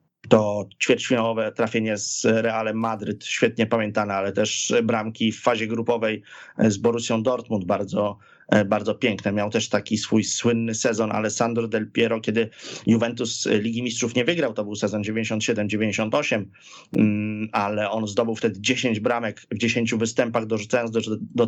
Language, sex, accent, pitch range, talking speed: Polish, male, native, 105-115 Hz, 140 wpm